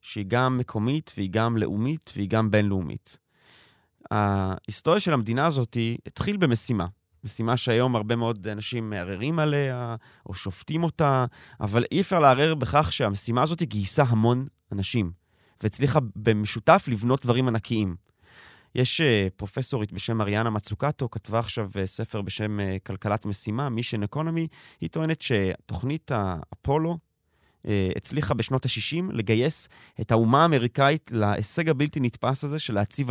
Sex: male